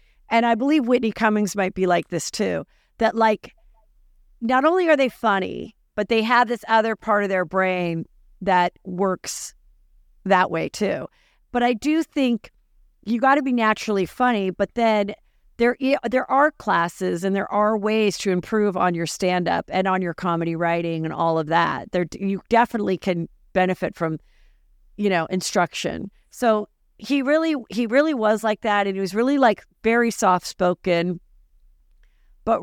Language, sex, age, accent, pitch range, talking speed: English, female, 40-59, American, 180-225 Hz, 170 wpm